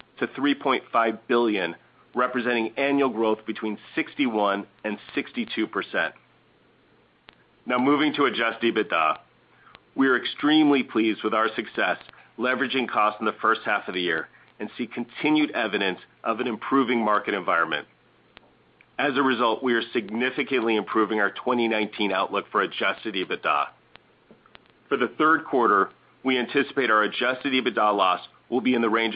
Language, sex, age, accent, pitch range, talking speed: English, male, 40-59, American, 110-135 Hz, 140 wpm